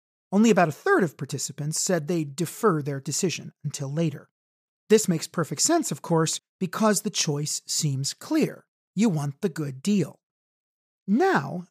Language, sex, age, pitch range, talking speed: English, male, 40-59, 160-215 Hz, 155 wpm